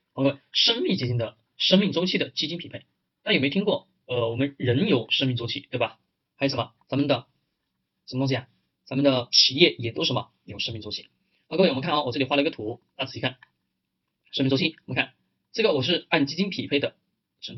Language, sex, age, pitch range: Chinese, male, 20-39, 125-175 Hz